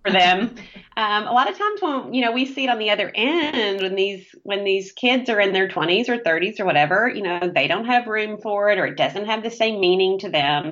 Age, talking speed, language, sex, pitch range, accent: 30-49, 265 wpm, English, female, 175-235 Hz, American